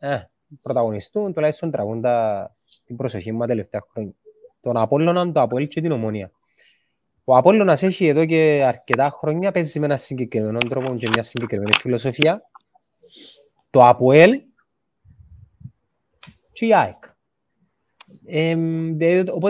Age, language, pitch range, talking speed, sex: 30-49, Greek, 130-205 Hz, 105 wpm, male